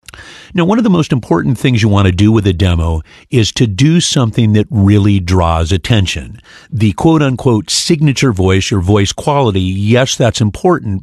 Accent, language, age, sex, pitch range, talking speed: American, English, 50-69, male, 95-125 Hz, 180 wpm